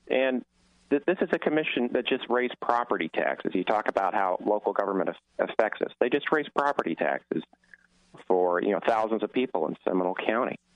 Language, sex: English, male